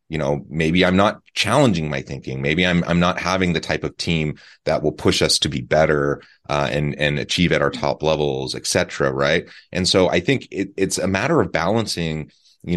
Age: 30-49